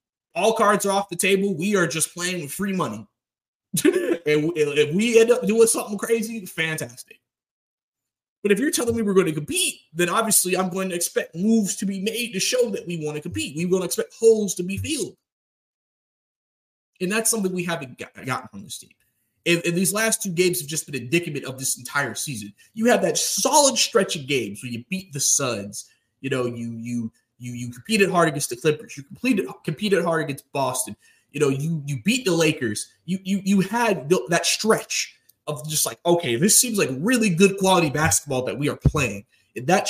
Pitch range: 125-200 Hz